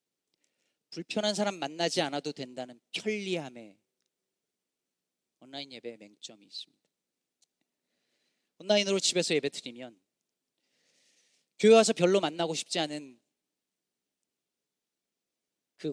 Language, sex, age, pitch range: Korean, male, 40-59, 145-210 Hz